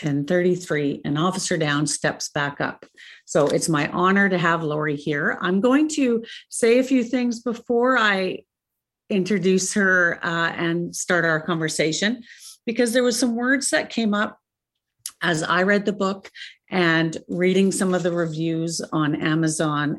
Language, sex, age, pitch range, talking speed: English, female, 50-69, 155-195 Hz, 155 wpm